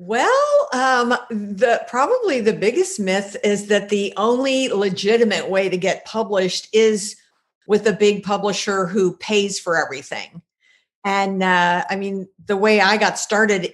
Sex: female